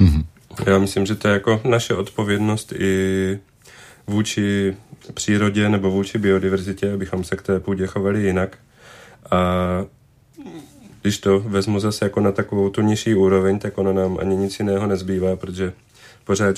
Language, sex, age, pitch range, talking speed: Czech, male, 30-49, 95-110 Hz, 145 wpm